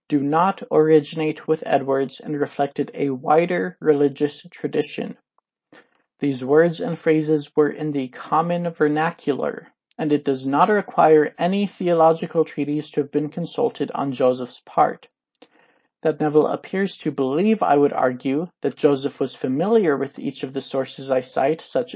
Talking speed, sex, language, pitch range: 150 wpm, male, English, 145-175 Hz